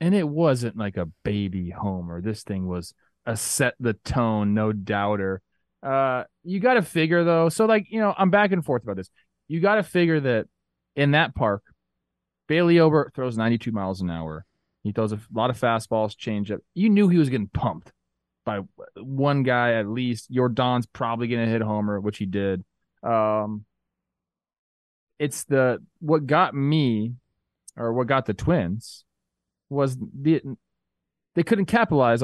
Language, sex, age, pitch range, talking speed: English, male, 20-39, 105-145 Hz, 170 wpm